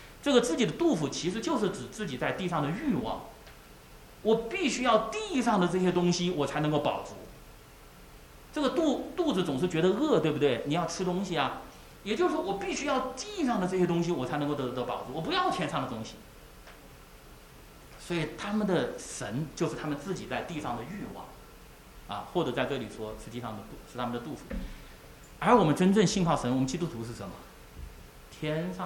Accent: Chinese